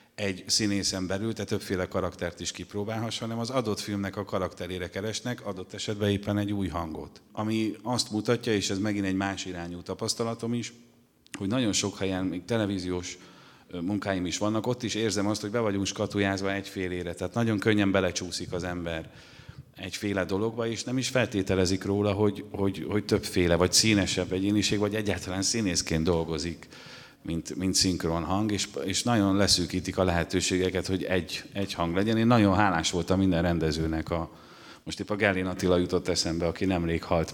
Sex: male